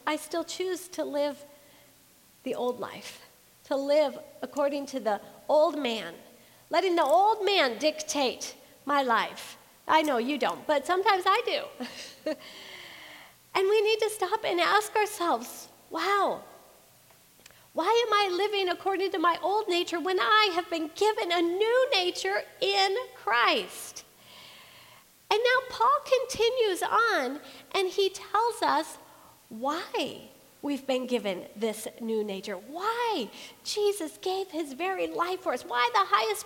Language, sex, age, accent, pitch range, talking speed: English, female, 40-59, American, 280-390 Hz, 140 wpm